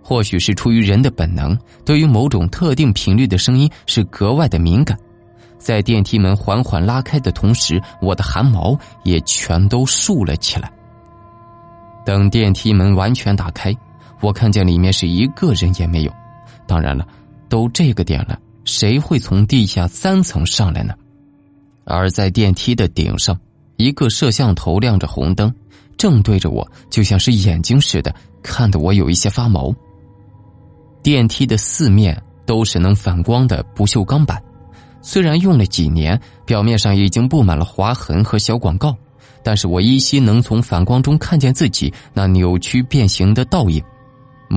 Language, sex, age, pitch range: Chinese, male, 20-39, 95-125 Hz